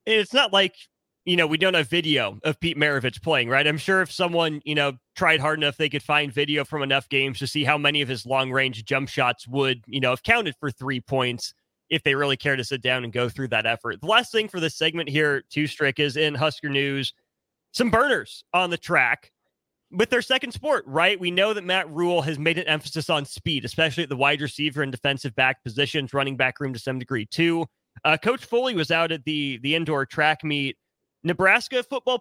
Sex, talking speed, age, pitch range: male, 230 wpm, 30-49, 140-175 Hz